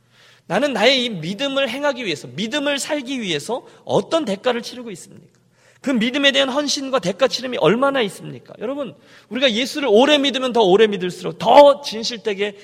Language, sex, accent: Korean, male, native